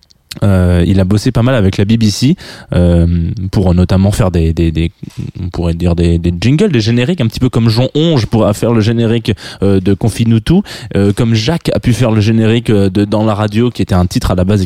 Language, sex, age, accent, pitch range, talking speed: French, male, 20-39, French, 95-120 Hz, 230 wpm